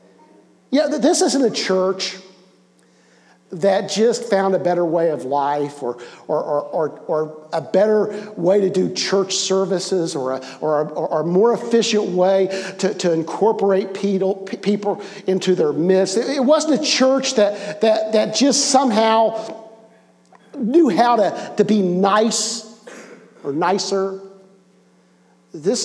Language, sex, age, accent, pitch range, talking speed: English, male, 50-69, American, 140-190 Hz, 140 wpm